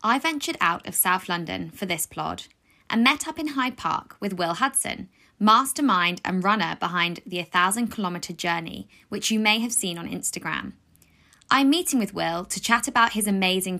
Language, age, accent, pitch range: English, 10-29, British, 180-235 Hz